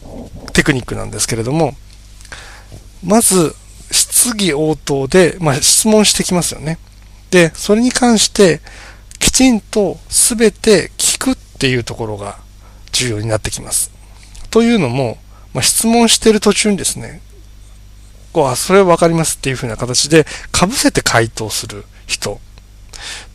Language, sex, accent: Japanese, male, native